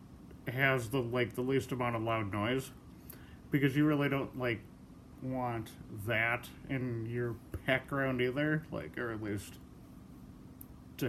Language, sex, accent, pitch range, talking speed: English, male, American, 110-140 Hz, 135 wpm